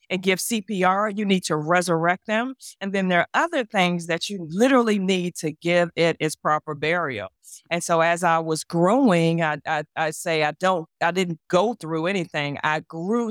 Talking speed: 190 wpm